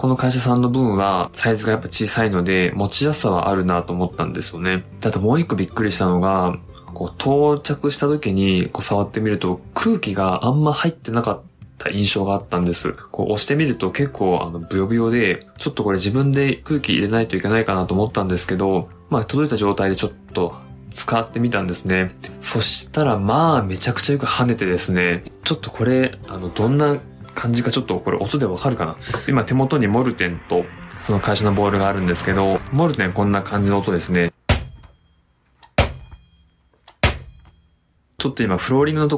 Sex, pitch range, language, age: male, 90-125 Hz, Japanese, 20-39